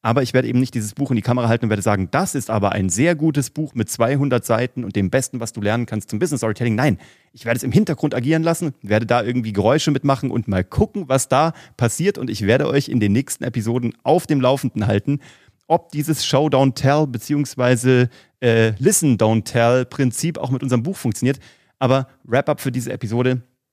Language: German